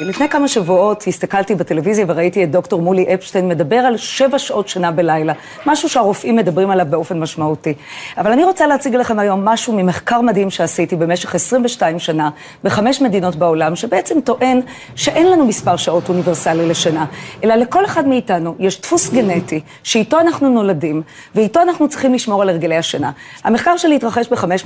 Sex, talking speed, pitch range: female, 165 wpm, 180-260 Hz